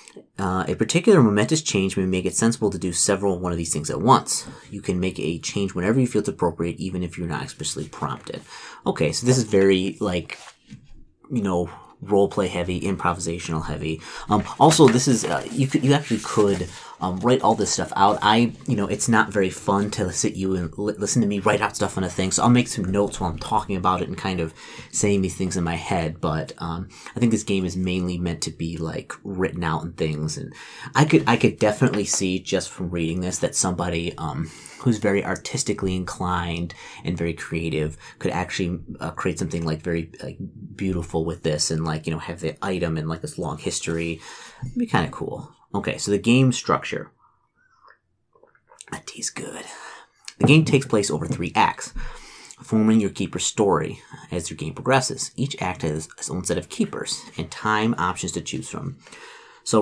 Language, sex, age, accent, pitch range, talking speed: English, male, 30-49, American, 85-110 Hz, 205 wpm